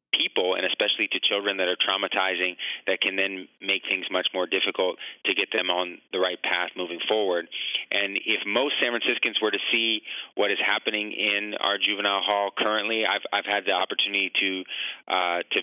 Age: 30-49